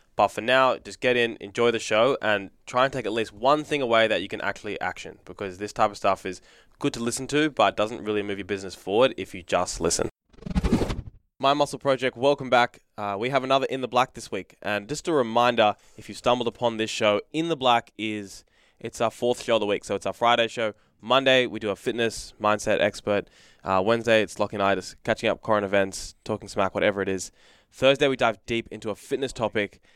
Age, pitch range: 20-39, 100-125 Hz